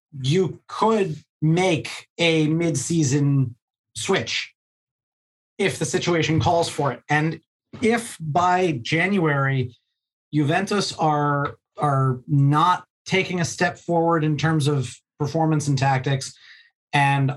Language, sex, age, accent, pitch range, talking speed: English, male, 30-49, American, 135-165 Hz, 105 wpm